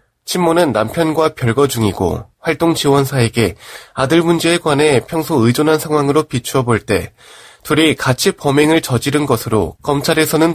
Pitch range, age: 115-160 Hz, 20-39